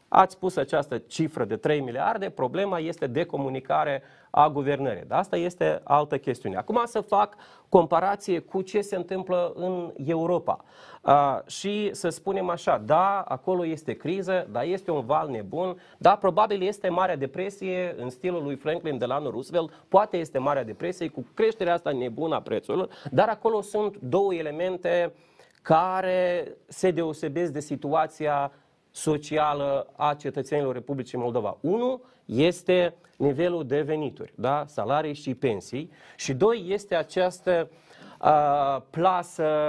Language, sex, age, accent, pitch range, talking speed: Romanian, male, 30-49, native, 145-185 Hz, 140 wpm